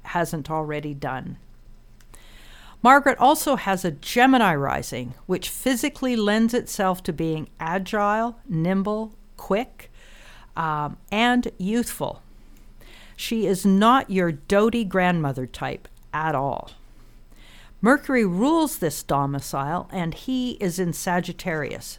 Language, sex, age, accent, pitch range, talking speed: English, female, 50-69, American, 160-215 Hz, 105 wpm